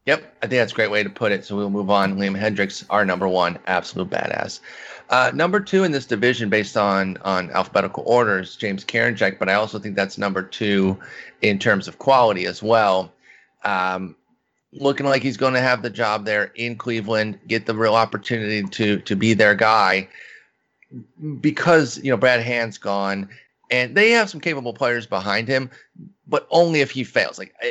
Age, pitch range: 30-49, 100-125 Hz